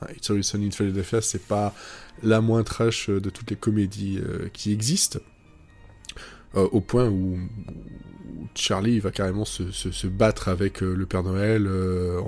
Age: 20-39